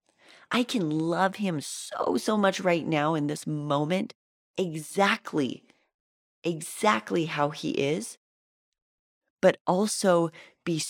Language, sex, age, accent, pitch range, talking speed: English, female, 30-49, American, 140-185 Hz, 110 wpm